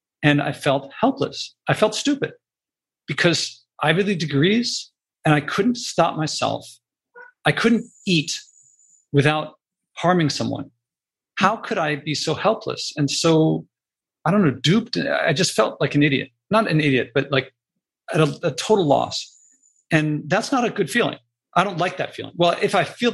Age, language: 40-59, English